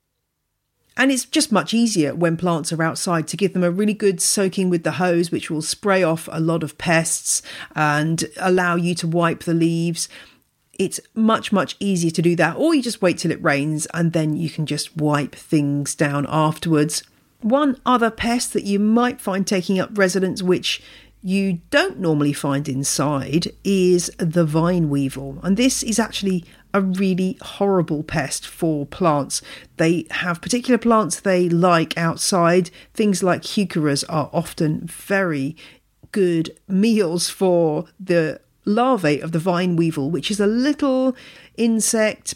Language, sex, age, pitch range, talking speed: English, female, 40-59, 160-195 Hz, 160 wpm